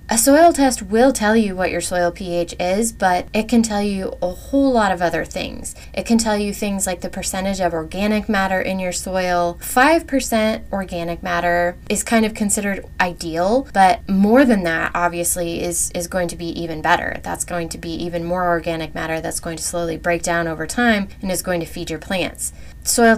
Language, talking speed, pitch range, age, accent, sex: English, 205 wpm, 175-215 Hz, 20-39, American, female